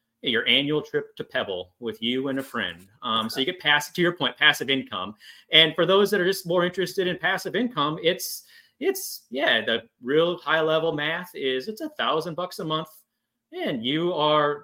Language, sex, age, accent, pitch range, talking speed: English, male, 30-49, American, 135-195 Hz, 200 wpm